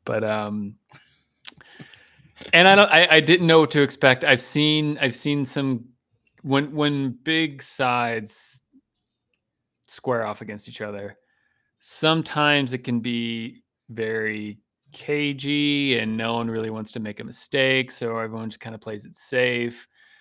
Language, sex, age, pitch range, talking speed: English, male, 30-49, 110-130 Hz, 145 wpm